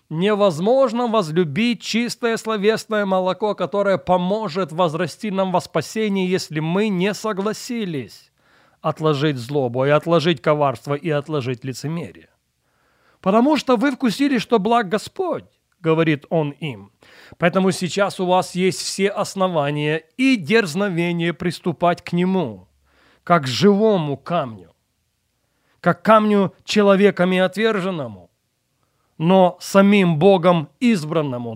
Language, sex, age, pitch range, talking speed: Russian, male, 30-49, 155-205 Hz, 105 wpm